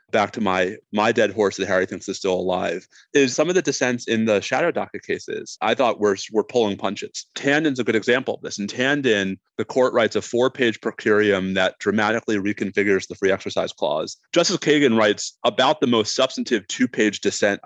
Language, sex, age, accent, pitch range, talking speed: English, male, 30-49, American, 100-135 Hz, 195 wpm